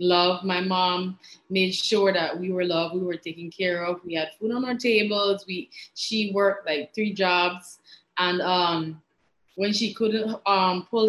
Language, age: English, 20-39